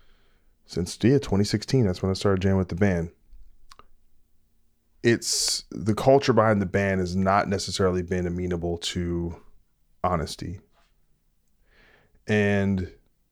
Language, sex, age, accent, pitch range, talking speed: English, male, 20-39, American, 90-105 Hz, 110 wpm